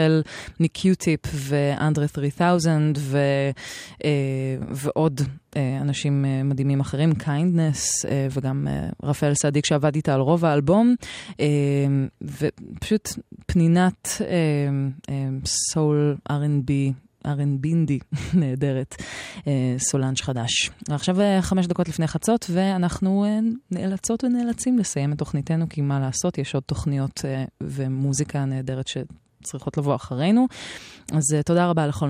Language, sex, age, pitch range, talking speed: Hebrew, female, 20-39, 140-175 Hz, 100 wpm